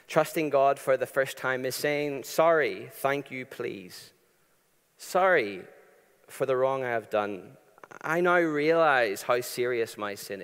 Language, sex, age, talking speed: English, male, 40-59, 150 wpm